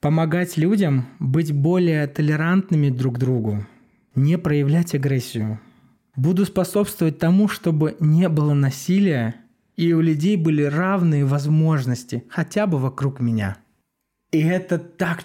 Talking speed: 120 wpm